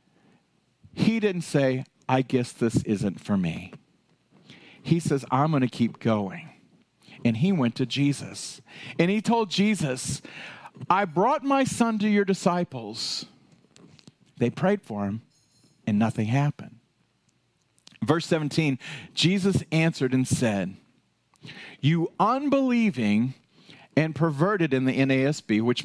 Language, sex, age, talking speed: English, male, 40-59, 125 wpm